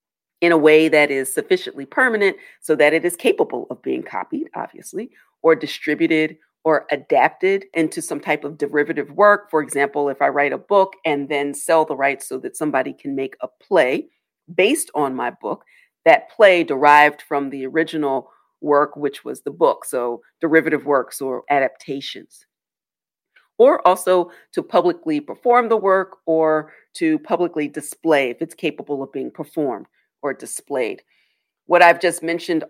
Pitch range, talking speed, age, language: 140-170 Hz, 160 wpm, 40-59, English